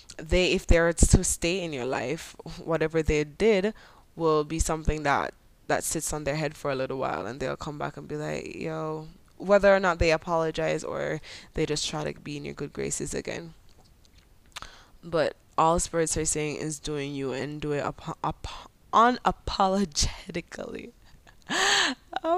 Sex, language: female, English